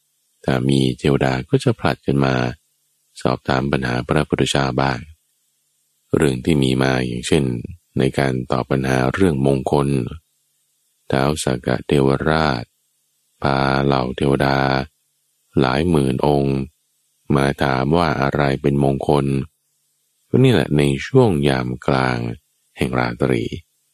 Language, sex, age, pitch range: Thai, male, 20-39, 65-80 Hz